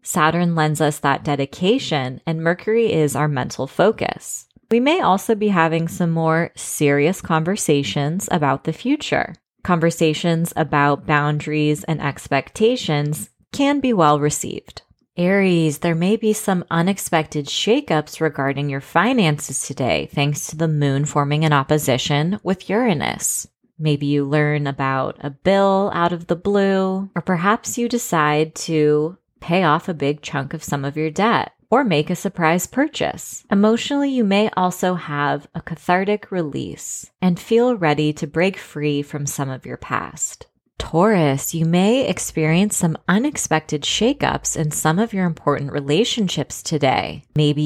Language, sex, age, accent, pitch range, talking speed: English, female, 20-39, American, 150-200 Hz, 145 wpm